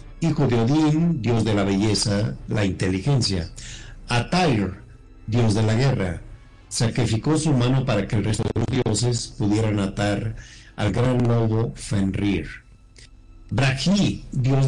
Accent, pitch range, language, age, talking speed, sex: Mexican, 100-125 Hz, Spanish, 50-69, 130 wpm, male